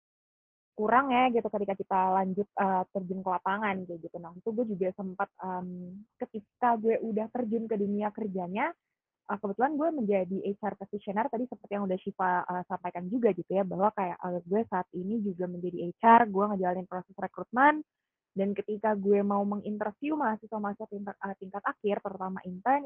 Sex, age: female, 20-39